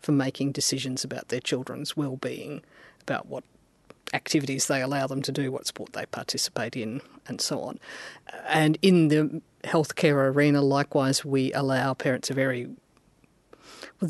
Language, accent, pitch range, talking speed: English, Australian, 135-170 Hz, 150 wpm